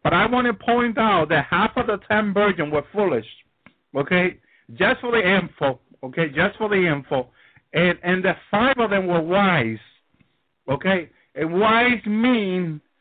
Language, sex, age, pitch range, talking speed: English, male, 50-69, 160-215 Hz, 165 wpm